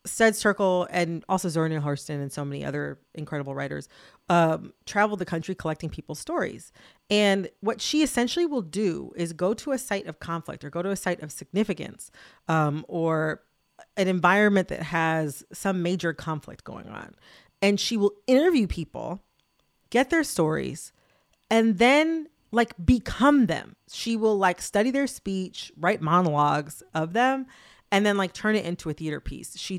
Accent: American